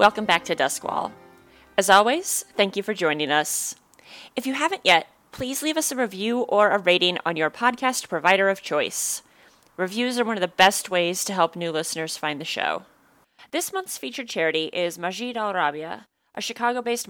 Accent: American